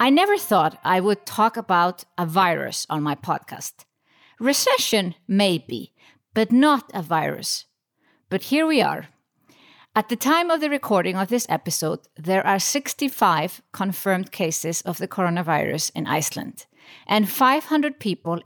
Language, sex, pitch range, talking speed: English, female, 175-255 Hz, 145 wpm